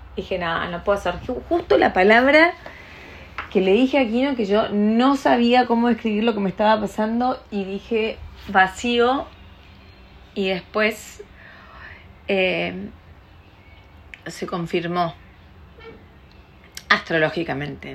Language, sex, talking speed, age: Spanish, female, 110 wpm, 30-49